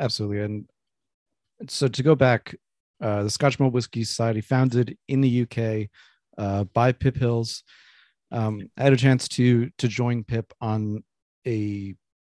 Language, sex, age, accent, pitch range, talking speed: English, male, 40-59, American, 105-125 Hz, 150 wpm